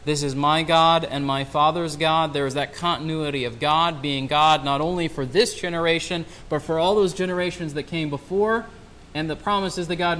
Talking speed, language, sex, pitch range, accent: 200 wpm, English, male, 145-185 Hz, American